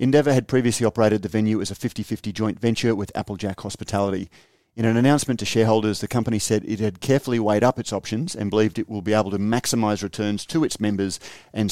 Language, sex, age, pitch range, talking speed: English, male, 40-59, 105-115 Hz, 215 wpm